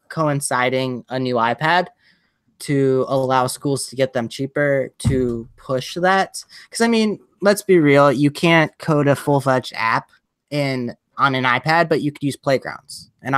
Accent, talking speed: American, 160 wpm